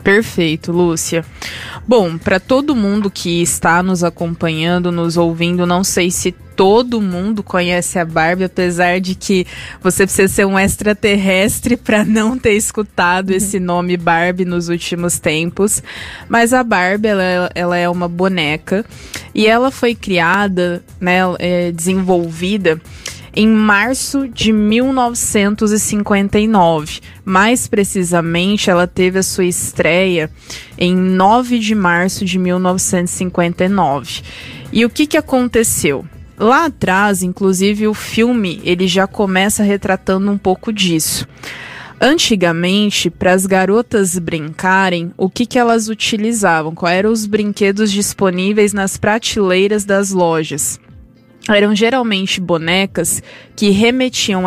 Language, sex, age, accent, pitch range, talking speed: Portuguese, female, 20-39, Brazilian, 180-220 Hz, 120 wpm